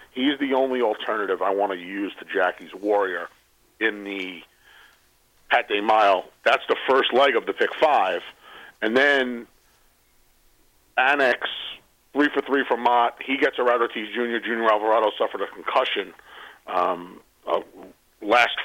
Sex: male